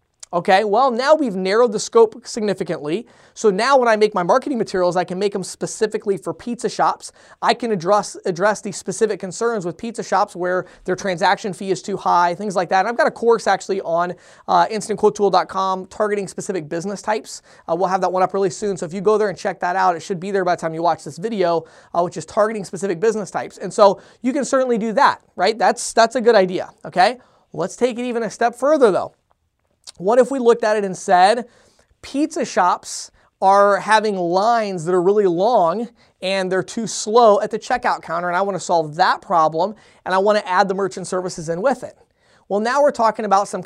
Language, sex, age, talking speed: English, male, 20-39, 225 wpm